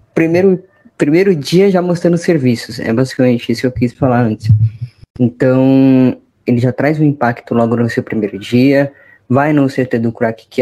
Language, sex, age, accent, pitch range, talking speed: Portuguese, female, 10-29, Brazilian, 115-140 Hz, 175 wpm